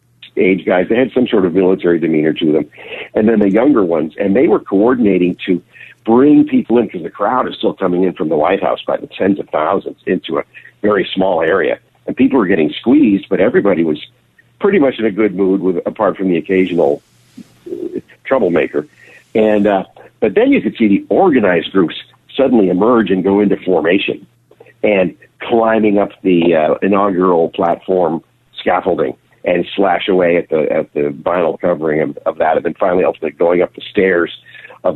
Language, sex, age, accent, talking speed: English, male, 50-69, American, 190 wpm